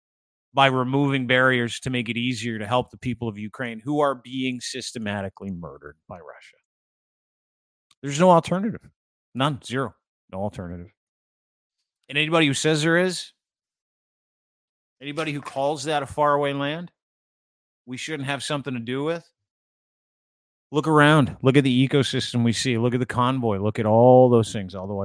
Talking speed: 155 wpm